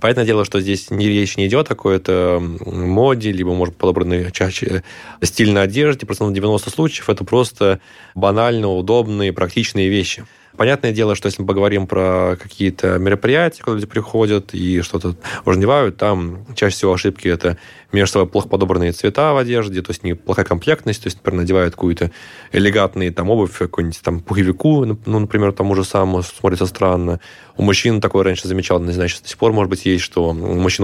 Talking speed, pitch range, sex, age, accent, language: 180 wpm, 90-105 Hz, male, 20-39, native, Russian